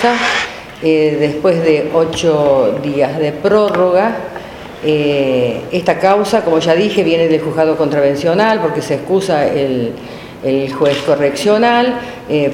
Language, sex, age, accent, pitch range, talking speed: Spanish, female, 50-69, Argentinian, 150-195 Hz, 120 wpm